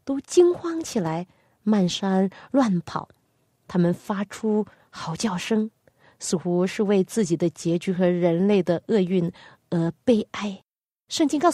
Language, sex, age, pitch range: Chinese, female, 30-49, 175-245 Hz